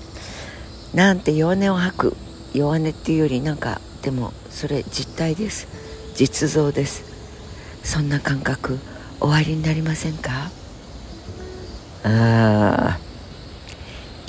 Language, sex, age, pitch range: Japanese, female, 50-69, 100-140 Hz